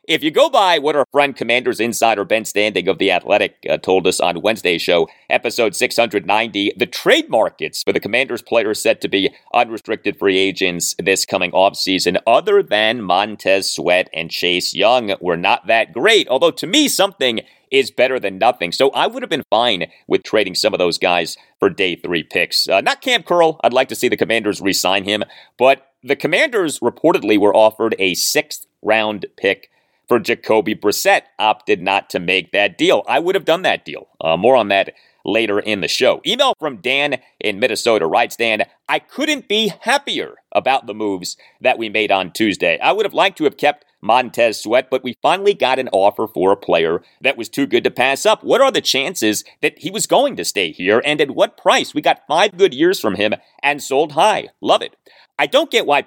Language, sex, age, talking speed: English, male, 40-59, 205 wpm